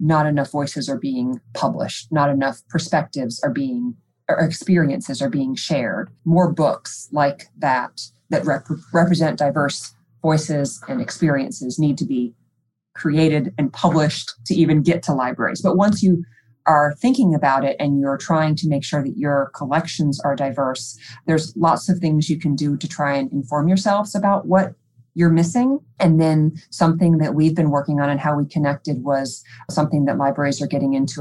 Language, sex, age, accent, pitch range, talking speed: English, female, 30-49, American, 135-165 Hz, 175 wpm